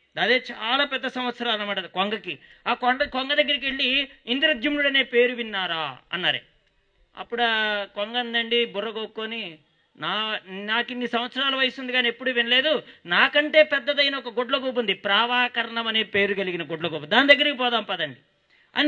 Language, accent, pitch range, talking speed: English, Indian, 220-275 Hz, 90 wpm